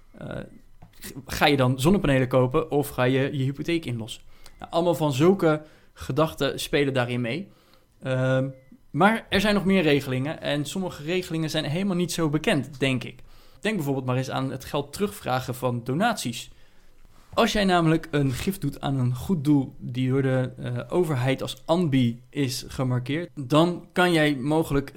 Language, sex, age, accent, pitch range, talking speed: Dutch, male, 20-39, Dutch, 130-160 Hz, 165 wpm